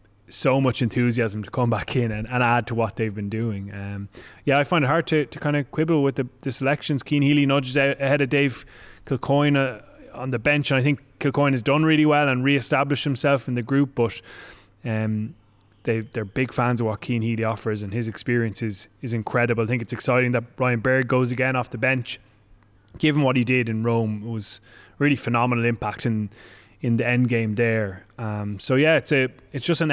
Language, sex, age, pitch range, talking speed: English, male, 20-39, 115-135 Hz, 220 wpm